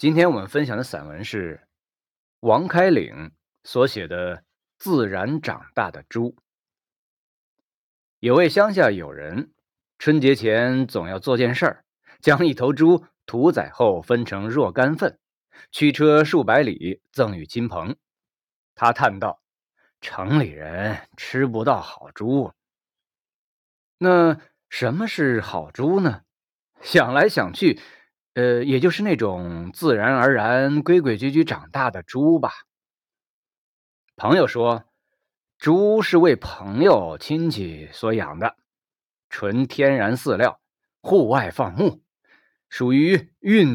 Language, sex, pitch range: Chinese, male, 105-155 Hz